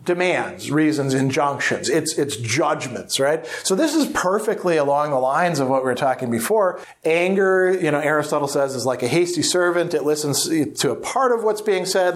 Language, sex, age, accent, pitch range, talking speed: English, male, 40-59, American, 135-175 Hz, 190 wpm